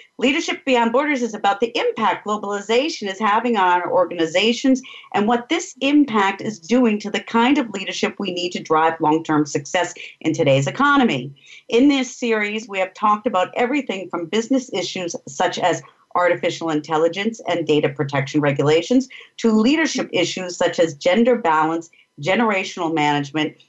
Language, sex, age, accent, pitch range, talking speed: English, female, 50-69, American, 160-245 Hz, 155 wpm